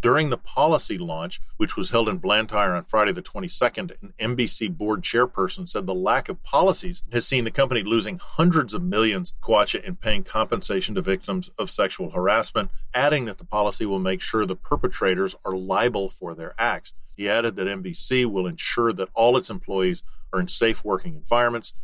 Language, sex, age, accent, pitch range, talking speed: English, male, 50-69, American, 105-170 Hz, 185 wpm